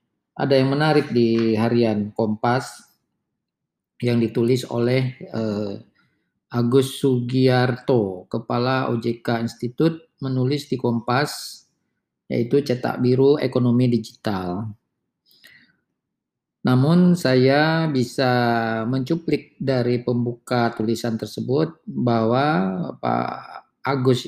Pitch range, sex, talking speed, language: 115-135 Hz, male, 85 wpm, Malay